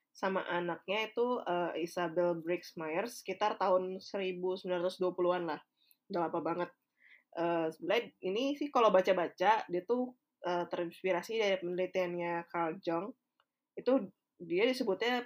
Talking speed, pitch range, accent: 120 wpm, 175-220 Hz, native